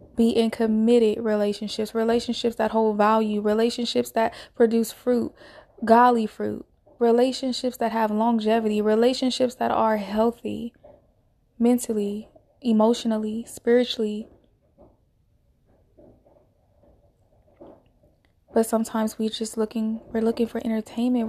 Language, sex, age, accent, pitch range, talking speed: English, female, 20-39, American, 220-240 Hz, 95 wpm